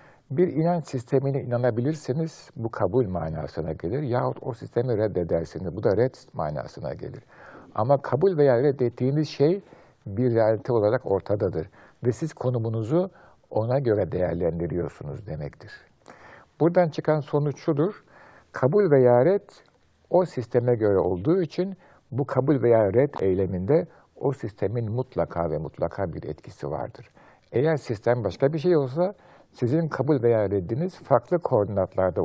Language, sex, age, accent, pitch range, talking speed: Turkish, male, 60-79, native, 105-150 Hz, 130 wpm